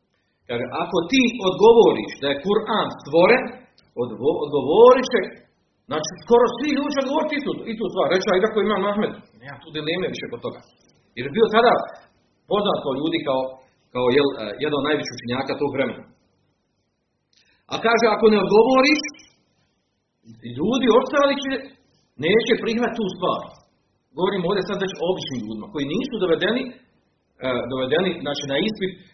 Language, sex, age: Croatian, male, 40-59